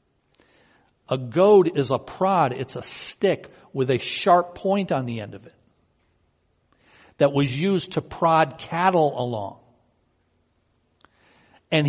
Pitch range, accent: 120-175 Hz, American